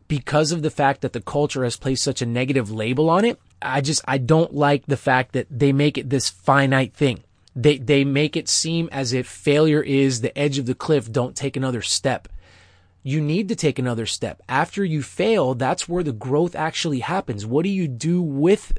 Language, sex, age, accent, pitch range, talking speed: English, male, 30-49, American, 120-150 Hz, 215 wpm